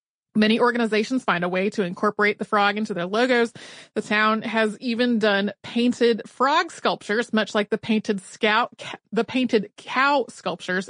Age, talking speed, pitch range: 30-49, 160 wpm, 205-245 Hz